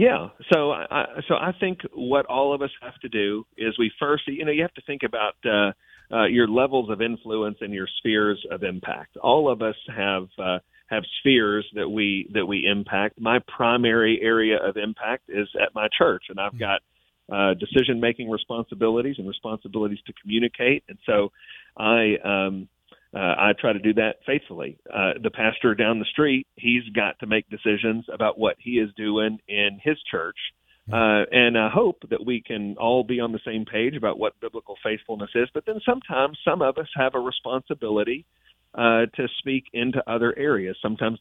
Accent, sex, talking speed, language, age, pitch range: American, male, 190 wpm, English, 40-59, 105-125 Hz